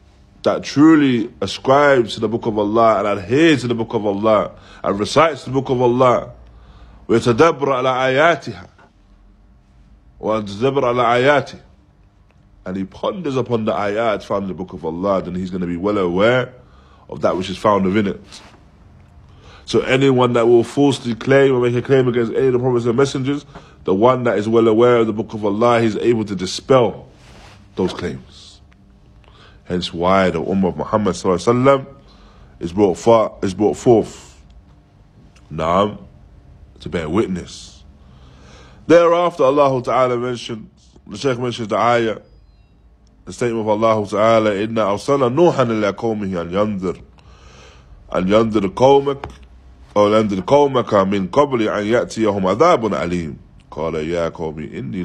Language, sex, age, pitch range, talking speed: English, male, 20-39, 95-125 Hz, 135 wpm